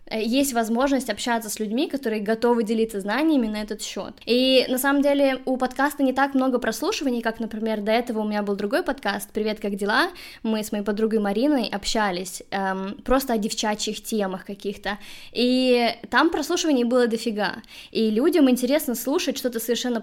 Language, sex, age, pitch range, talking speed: Russian, female, 20-39, 220-265 Hz, 170 wpm